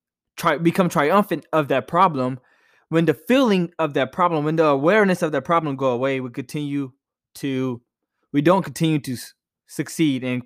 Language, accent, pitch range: English, American, 130-165 Hz